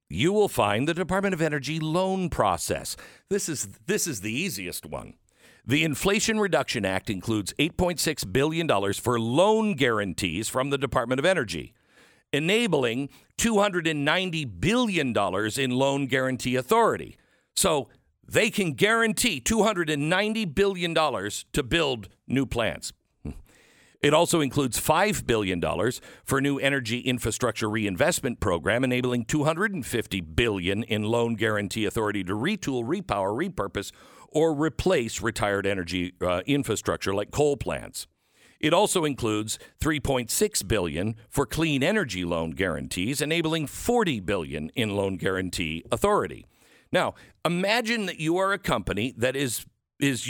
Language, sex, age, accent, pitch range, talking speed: English, male, 50-69, American, 110-165 Hz, 130 wpm